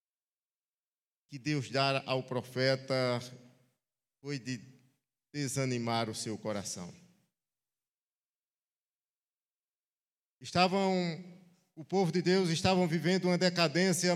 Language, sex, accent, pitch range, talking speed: Portuguese, male, Brazilian, 140-195 Hz, 80 wpm